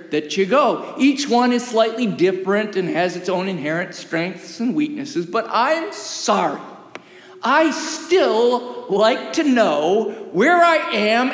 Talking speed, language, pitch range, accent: 145 wpm, English, 190-265 Hz, American